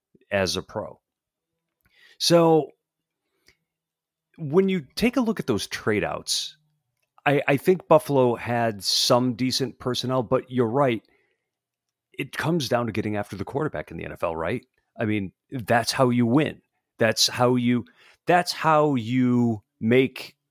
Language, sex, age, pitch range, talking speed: English, male, 40-59, 105-145 Hz, 145 wpm